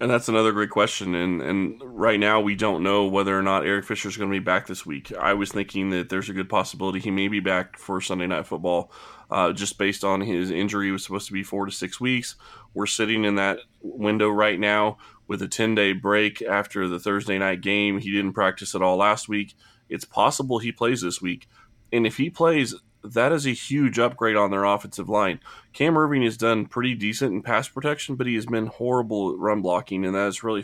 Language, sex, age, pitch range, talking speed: English, male, 20-39, 95-115 Hz, 230 wpm